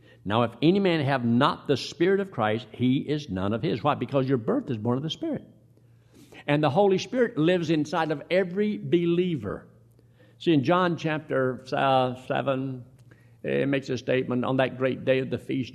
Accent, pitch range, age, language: American, 110-145 Hz, 60-79, English